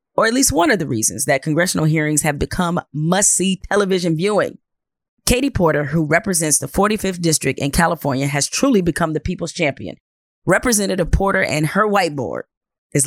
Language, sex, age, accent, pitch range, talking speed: English, female, 30-49, American, 155-195 Hz, 170 wpm